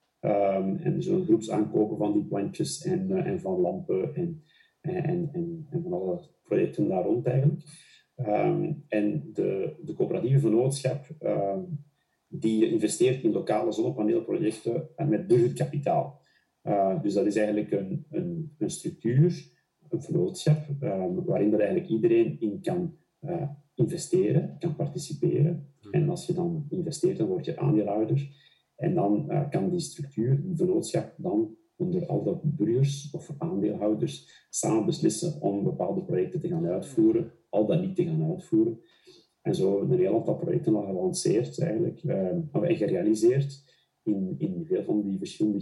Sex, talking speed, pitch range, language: male, 155 wpm, 145-175 Hz, Dutch